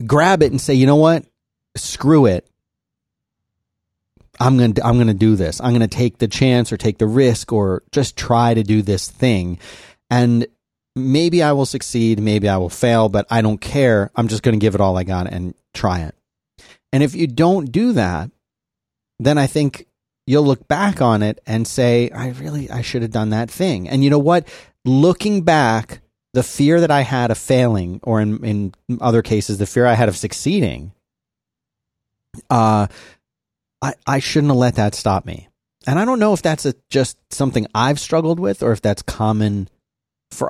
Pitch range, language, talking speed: 105-135 Hz, English, 195 wpm